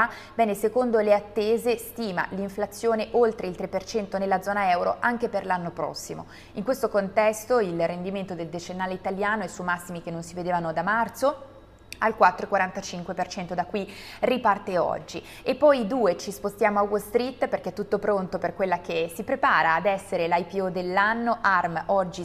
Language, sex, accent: Italian, female, native